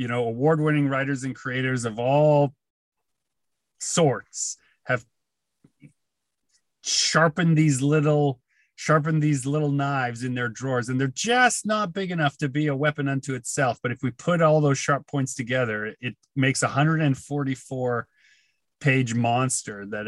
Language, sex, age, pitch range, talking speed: English, male, 30-49, 120-145 Hz, 150 wpm